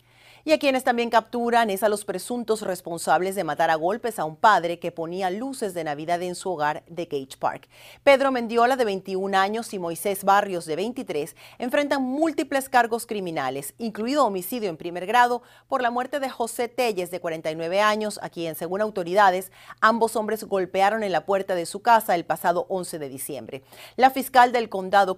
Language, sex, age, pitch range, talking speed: Spanish, female, 40-59, 180-255 Hz, 185 wpm